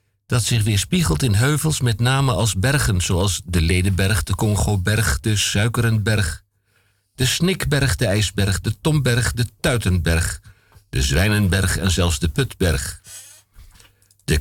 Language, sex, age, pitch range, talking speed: Dutch, male, 60-79, 95-115 Hz, 130 wpm